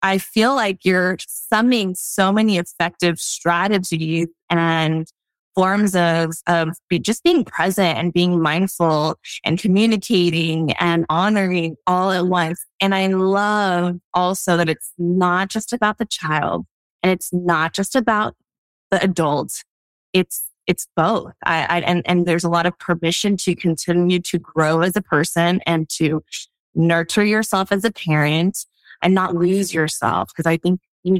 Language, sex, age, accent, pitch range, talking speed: English, female, 20-39, American, 165-200 Hz, 150 wpm